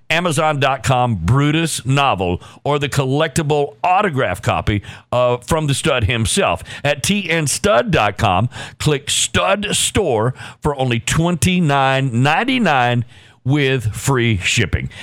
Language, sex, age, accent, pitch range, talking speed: English, male, 50-69, American, 125-170 Hz, 95 wpm